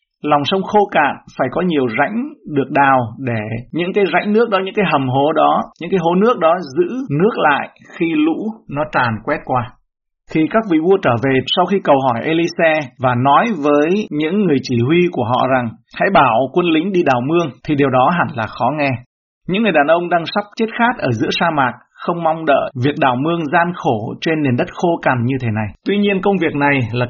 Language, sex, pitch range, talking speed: Vietnamese, male, 130-190 Hz, 230 wpm